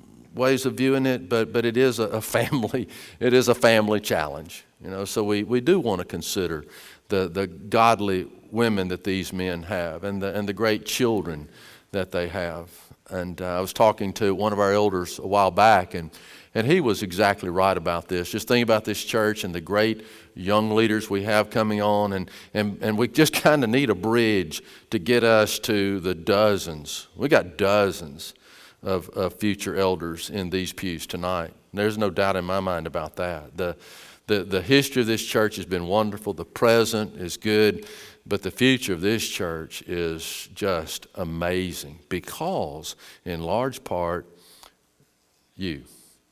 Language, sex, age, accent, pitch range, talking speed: English, male, 50-69, American, 90-110 Hz, 180 wpm